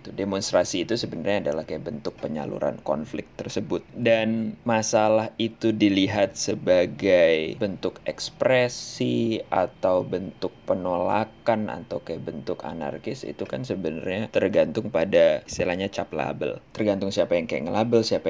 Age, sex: 20-39, male